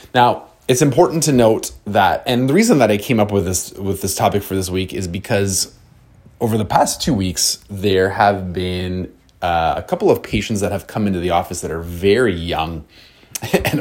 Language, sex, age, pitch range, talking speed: English, male, 30-49, 80-105 Hz, 205 wpm